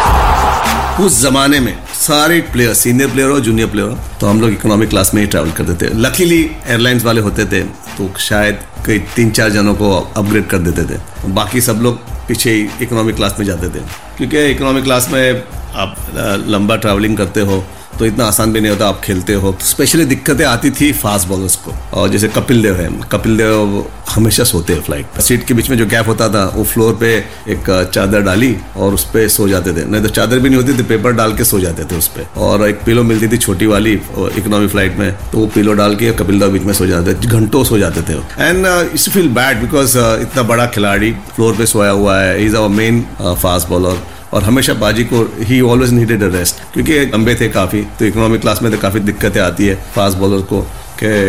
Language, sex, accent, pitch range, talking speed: Hindi, male, native, 100-120 Hz, 225 wpm